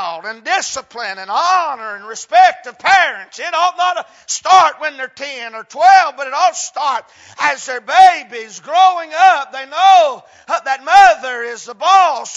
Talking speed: 165 wpm